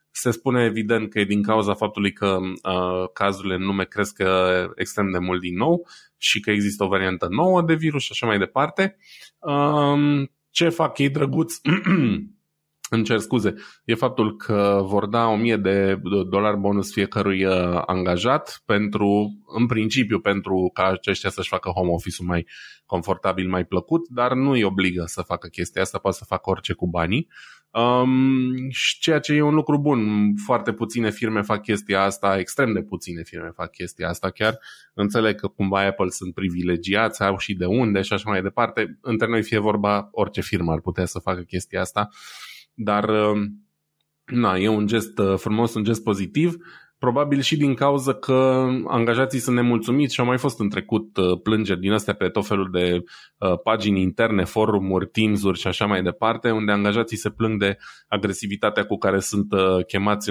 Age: 20-39